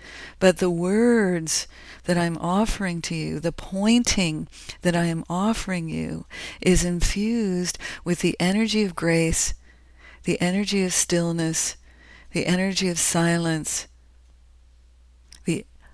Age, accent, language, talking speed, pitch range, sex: 50-69, American, English, 115 wpm, 150-190 Hz, female